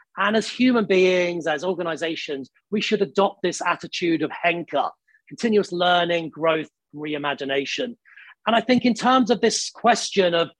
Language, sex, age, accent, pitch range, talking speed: English, male, 40-59, British, 165-215 Hz, 145 wpm